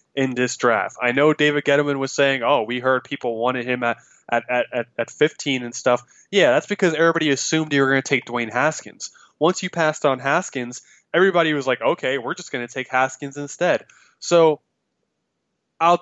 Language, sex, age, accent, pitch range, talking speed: English, male, 20-39, American, 125-160 Hz, 195 wpm